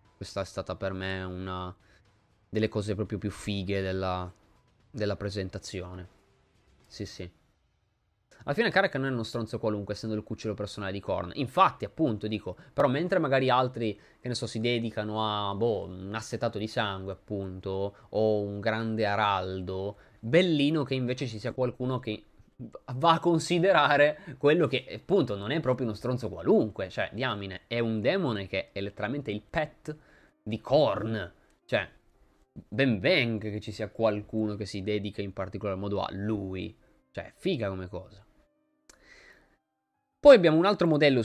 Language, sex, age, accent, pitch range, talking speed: Italian, male, 20-39, native, 100-120 Hz, 155 wpm